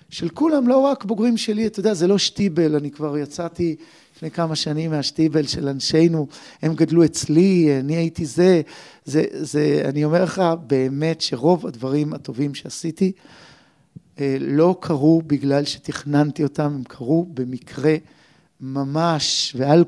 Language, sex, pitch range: Hebrew, male, 145-185 Hz